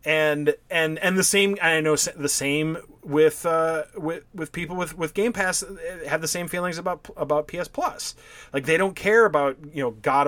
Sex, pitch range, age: male, 135-175 Hz, 30-49